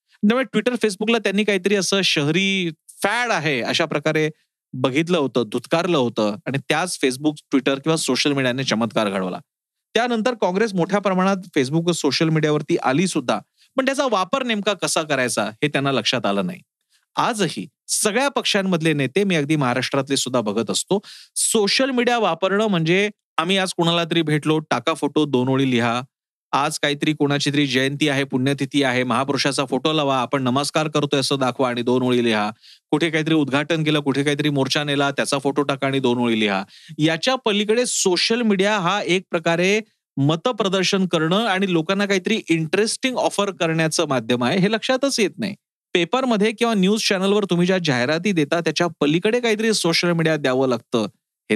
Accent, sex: native, male